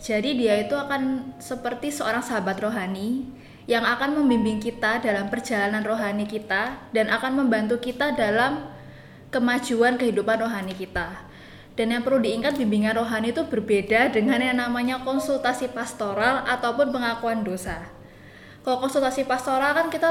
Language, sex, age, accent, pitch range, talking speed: Indonesian, female, 10-29, native, 215-265 Hz, 135 wpm